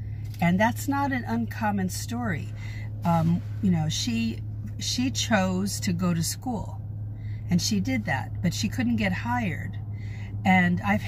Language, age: English, 50-69